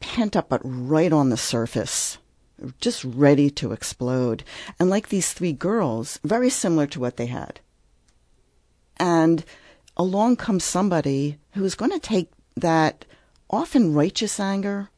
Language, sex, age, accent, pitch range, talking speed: English, female, 50-69, American, 135-180 Hz, 140 wpm